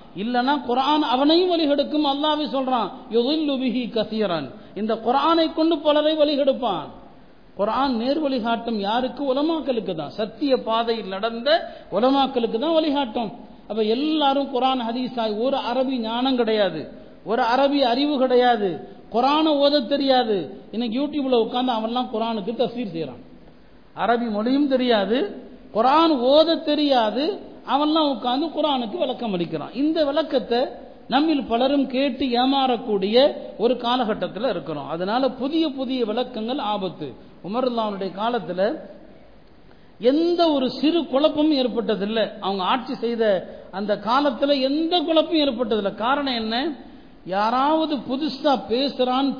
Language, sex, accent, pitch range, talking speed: Tamil, male, native, 225-280 Hz, 55 wpm